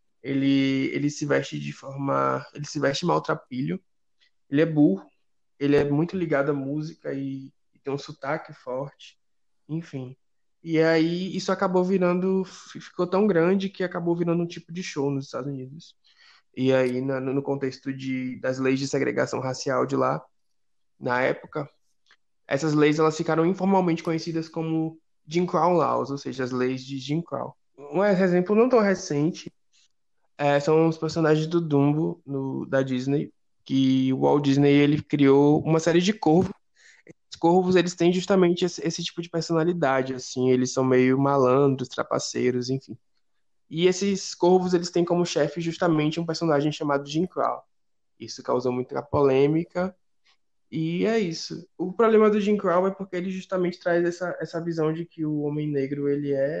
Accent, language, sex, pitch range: Brazilian, Portuguese, male, 135-175 Hz